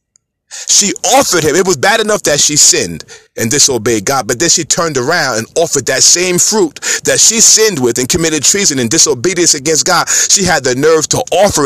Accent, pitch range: American, 135-200 Hz